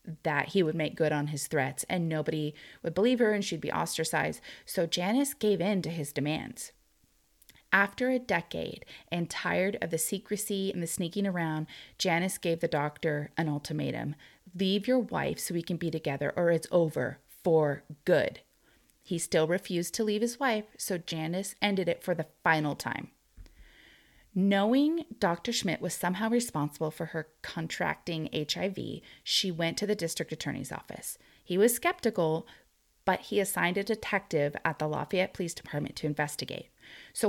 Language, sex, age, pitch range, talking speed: English, female, 30-49, 160-205 Hz, 165 wpm